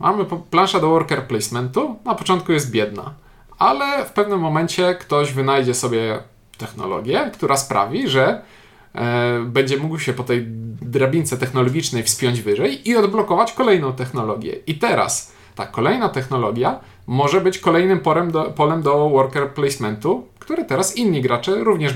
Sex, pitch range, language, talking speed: male, 125-155 Hz, Polish, 140 wpm